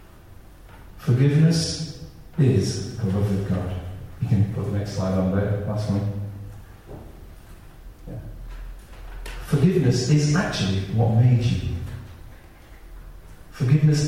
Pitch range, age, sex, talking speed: 95-115 Hz, 40-59, male, 100 wpm